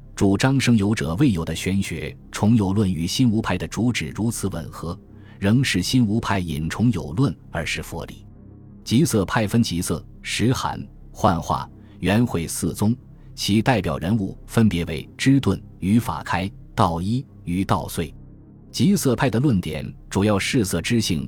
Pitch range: 90-120 Hz